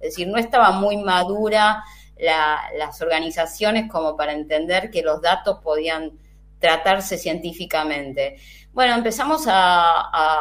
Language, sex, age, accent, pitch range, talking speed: Spanish, female, 20-39, Argentinian, 160-220 Hz, 125 wpm